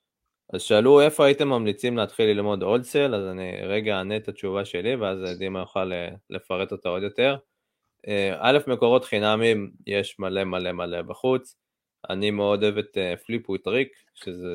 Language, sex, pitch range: Hebrew, male, 95-110 Hz